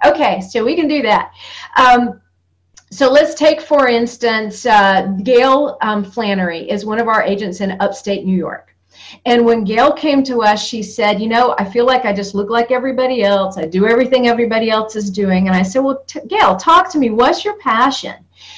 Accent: American